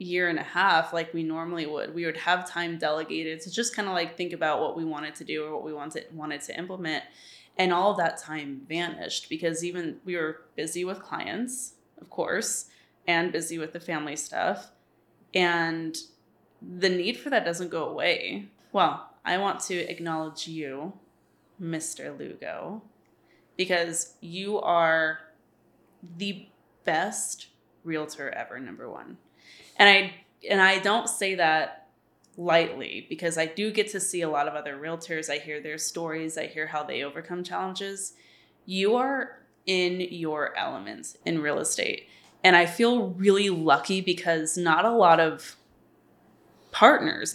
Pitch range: 160-190 Hz